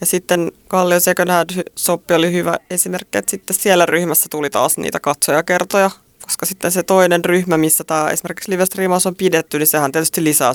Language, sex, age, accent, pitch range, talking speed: Finnish, female, 20-39, native, 155-180 Hz, 175 wpm